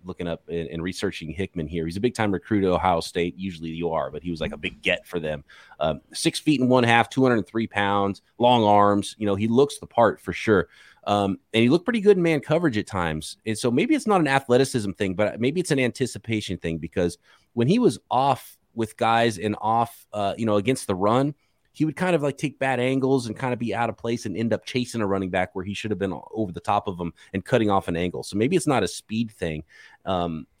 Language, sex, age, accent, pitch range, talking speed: English, male, 30-49, American, 90-115 Hz, 255 wpm